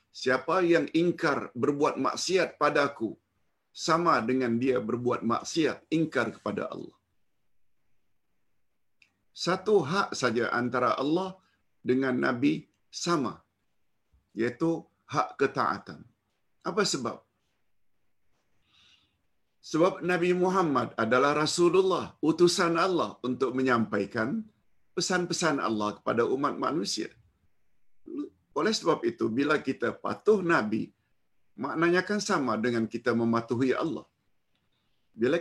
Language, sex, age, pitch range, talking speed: Malayalam, male, 50-69, 115-170 Hz, 95 wpm